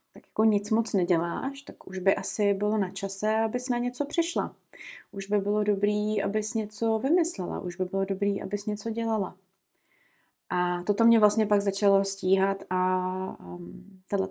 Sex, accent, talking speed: female, native, 160 wpm